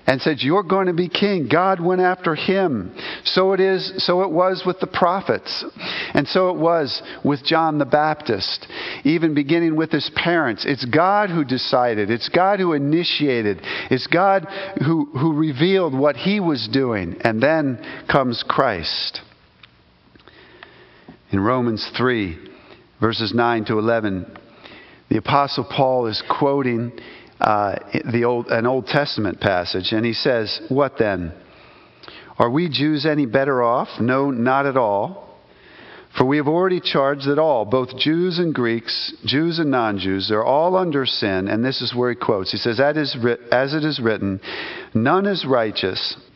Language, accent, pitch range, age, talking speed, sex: English, American, 120-165 Hz, 50-69, 160 wpm, male